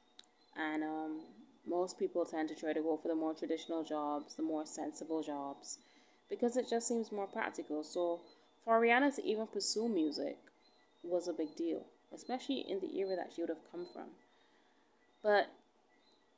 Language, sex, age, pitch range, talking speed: English, female, 20-39, 165-245 Hz, 170 wpm